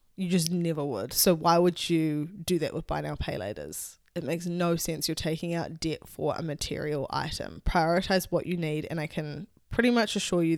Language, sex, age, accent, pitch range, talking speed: English, female, 10-29, Australian, 160-190 Hz, 215 wpm